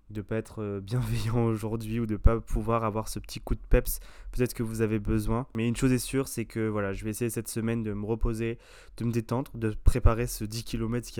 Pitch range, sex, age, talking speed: 110-120 Hz, male, 20-39, 250 wpm